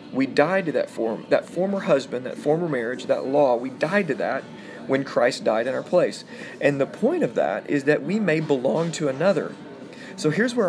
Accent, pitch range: American, 125-155 Hz